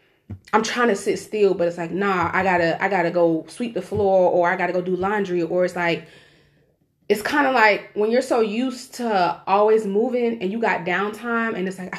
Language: English